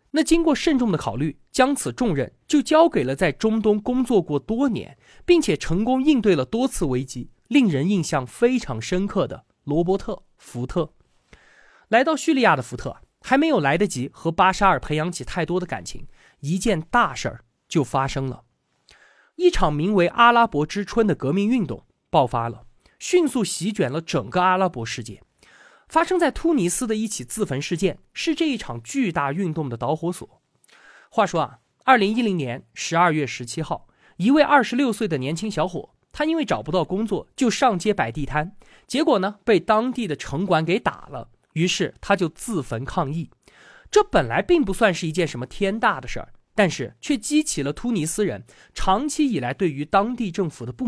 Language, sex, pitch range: Chinese, male, 150-240 Hz